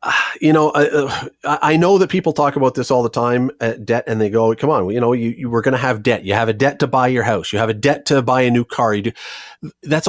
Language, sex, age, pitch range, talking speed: English, male, 40-59, 115-155 Hz, 290 wpm